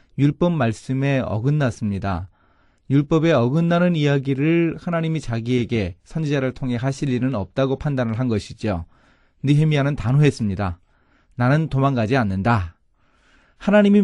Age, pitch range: 30-49, 110-155 Hz